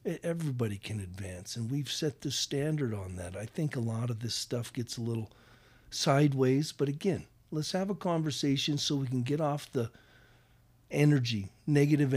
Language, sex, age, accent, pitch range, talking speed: English, male, 50-69, American, 115-145 Hz, 175 wpm